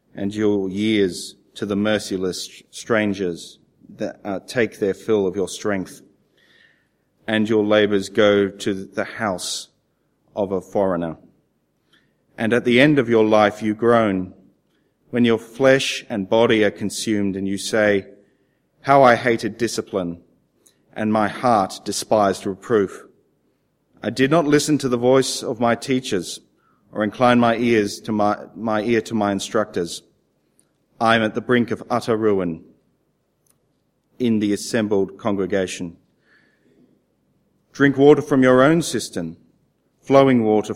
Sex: male